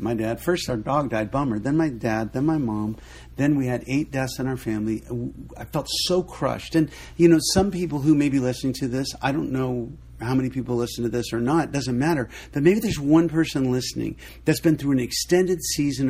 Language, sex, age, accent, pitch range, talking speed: English, male, 50-69, American, 100-150 Hz, 230 wpm